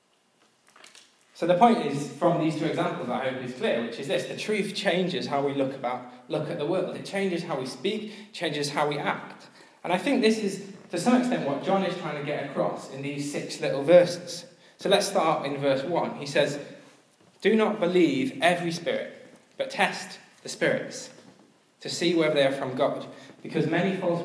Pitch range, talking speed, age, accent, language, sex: 140-185 Hz, 205 wpm, 20-39, British, English, male